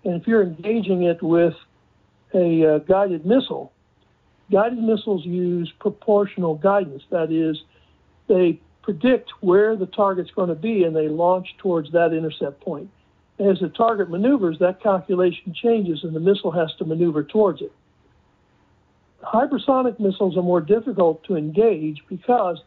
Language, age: English, 60-79